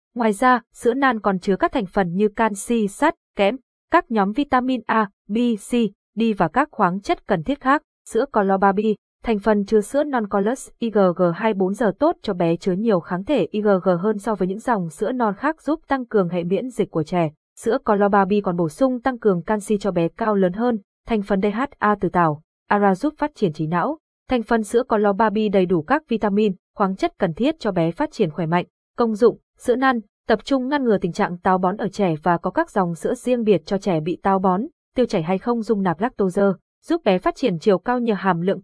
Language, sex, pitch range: Vietnamese, female, 190-240 Hz